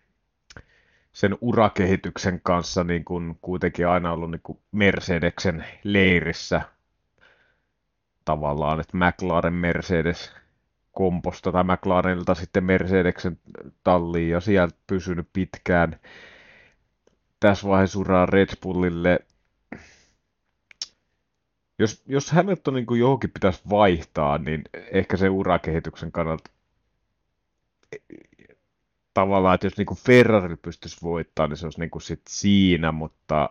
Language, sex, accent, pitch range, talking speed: Finnish, male, native, 80-95 Hz, 100 wpm